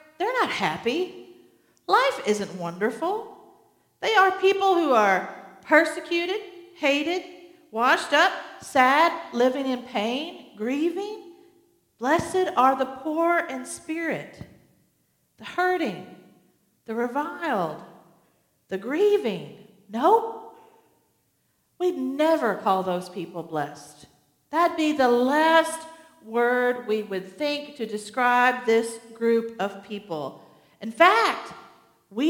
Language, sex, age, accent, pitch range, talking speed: English, female, 50-69, American, 210-325 Hz, 105 wpm